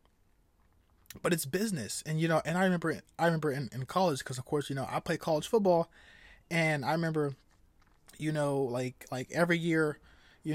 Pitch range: 130-175 Hz